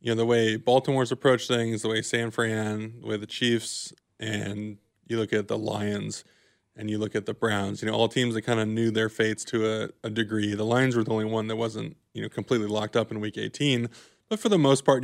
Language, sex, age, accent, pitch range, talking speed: English, male, 20-39, American, 110-120 Hz, 245 wpm